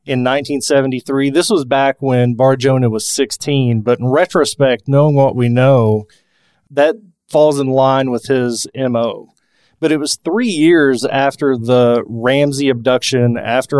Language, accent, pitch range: English, American, 125-150 Hz